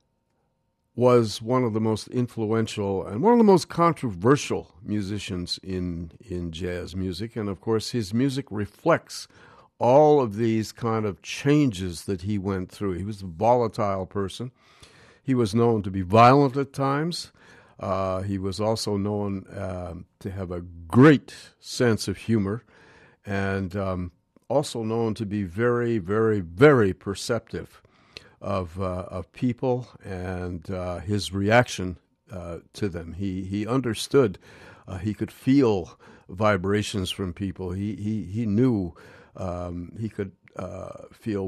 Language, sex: English, male